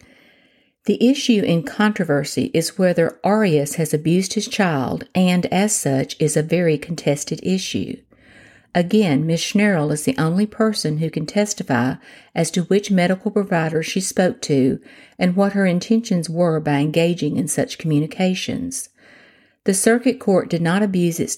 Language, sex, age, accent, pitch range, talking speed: English, female, 50-69, American, 155-205 Hz, 150 wpm